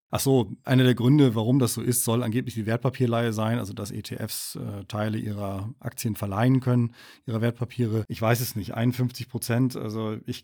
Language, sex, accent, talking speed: German, male, German, 190 wpm